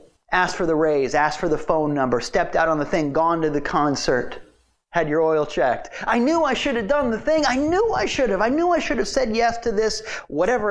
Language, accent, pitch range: English, American, 145-220 Hz